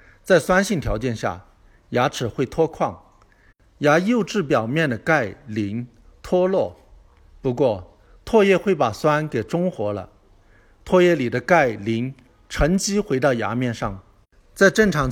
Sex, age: male, 50-69